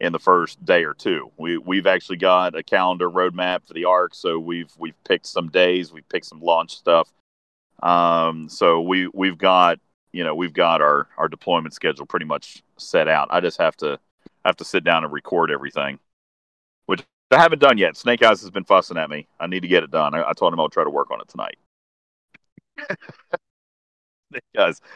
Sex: male